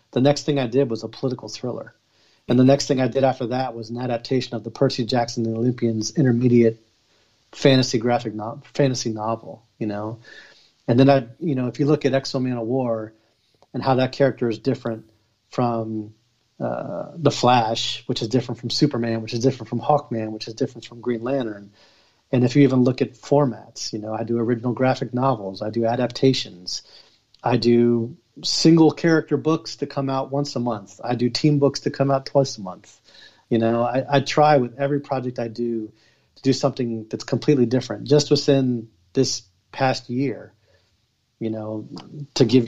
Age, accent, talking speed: 40-59, American, 190 wpm